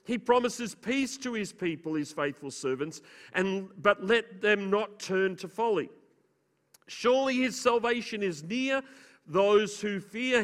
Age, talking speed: 40-59, 140 wpm